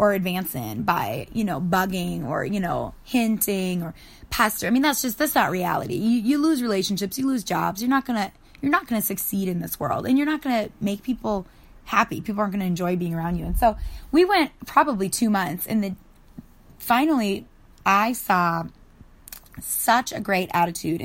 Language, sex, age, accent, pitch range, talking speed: English, female, 20-39, American, 180-240 Hz, 200 wpm